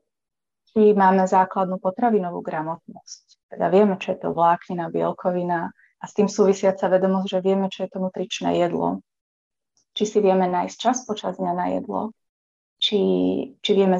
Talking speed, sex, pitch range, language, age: 160 wpm, female, 185-210 Hz, Slovak, 30-49